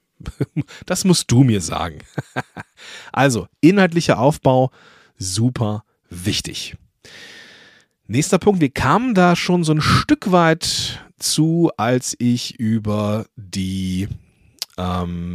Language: German